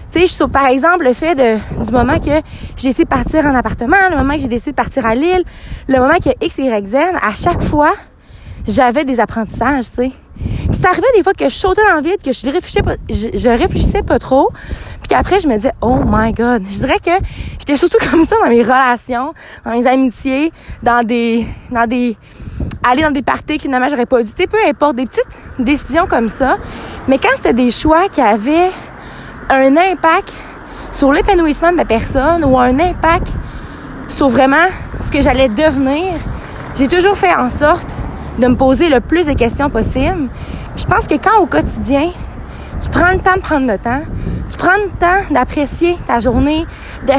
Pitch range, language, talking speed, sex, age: 255-350 Hz, French, 210 wpm, female, 20-39